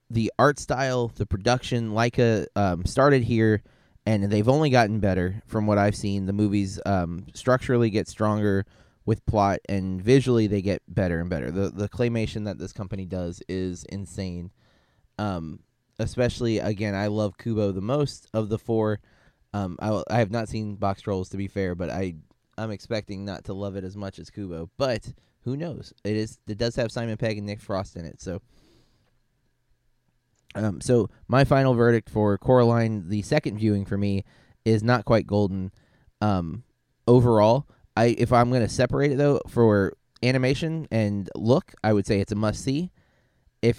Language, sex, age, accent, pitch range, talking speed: English, male, 20-39, American, 100-120 Hz, 180 wpm